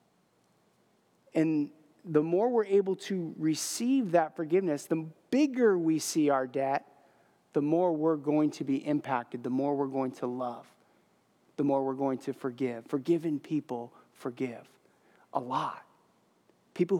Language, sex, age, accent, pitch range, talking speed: English, male, 30-49, American, 145-190 Hz, 140 wpm